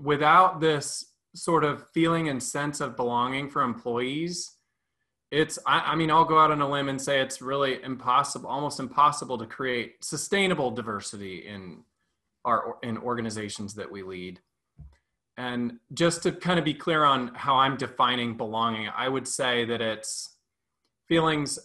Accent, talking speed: American, 160 wpm